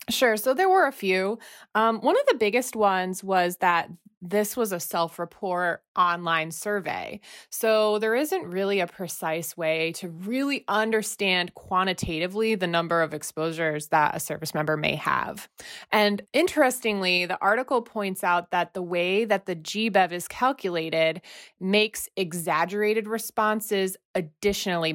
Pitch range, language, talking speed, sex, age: 160-210 Hz, English, 140 wpm, female, 20-39